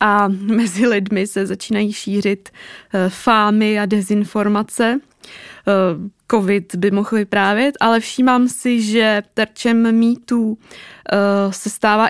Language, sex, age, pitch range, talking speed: Czech, female, 20-39, 195-225 Hz, 120 wpm